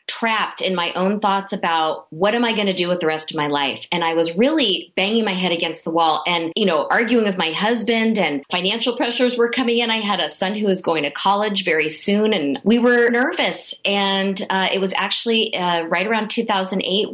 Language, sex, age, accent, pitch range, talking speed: English, female, 30-49, American, 160-210 Hz, 230 wpm